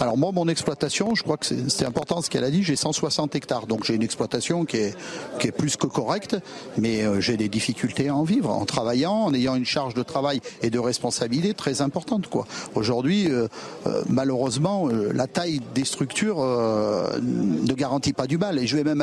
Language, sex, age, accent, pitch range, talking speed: French, male, 50-69, French, 125-165 Hz, 210 wpm